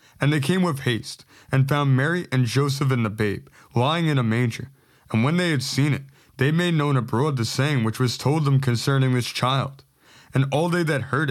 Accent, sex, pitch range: American, male, 120-145 Hz